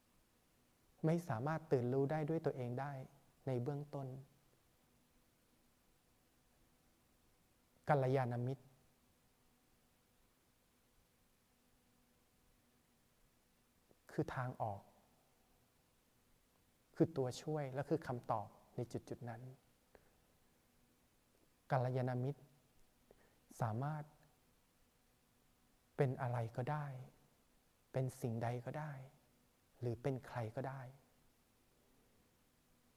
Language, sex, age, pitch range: Thai, male, 20-39, 125-145 Hz